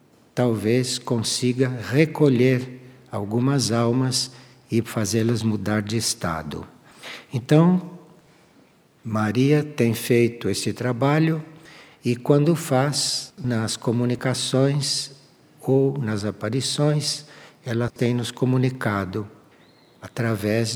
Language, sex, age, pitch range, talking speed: Portuguese, male, 60-79, 115-150 Hz, 85 wpm